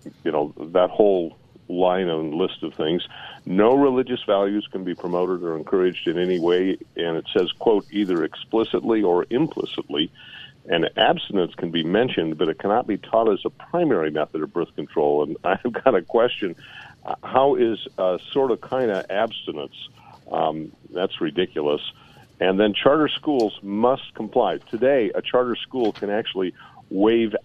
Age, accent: 50-69, American